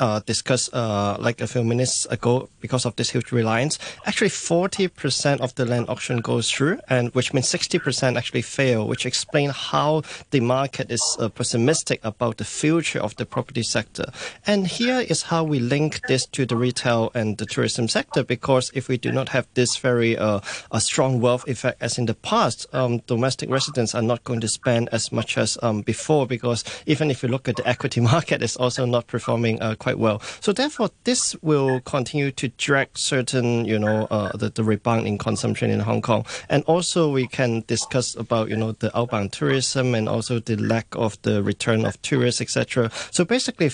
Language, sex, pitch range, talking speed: English, male, 115-140 Hz, 200 wpm